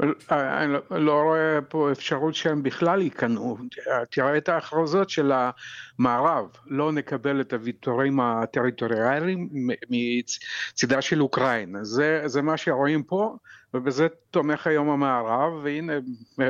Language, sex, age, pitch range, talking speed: Hebrew, male, 50-69, 125-160 Hz, 115 wpm